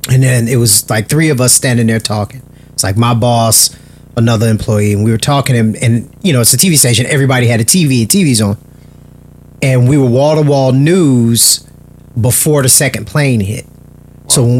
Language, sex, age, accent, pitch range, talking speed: English, male, 30-49, American, 120-145 Hz, 205 wpm